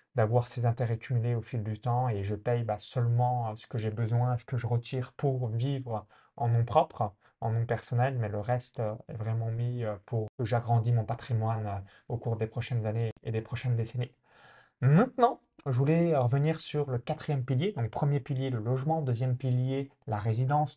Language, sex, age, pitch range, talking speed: French, male, 20-39, 115-140 Hz, 190 wpm